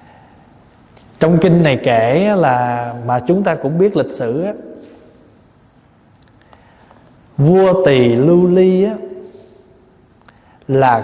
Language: Vietnamese